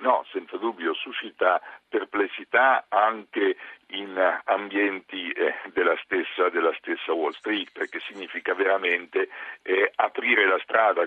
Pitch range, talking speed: 320-430 Hz, 120 wpm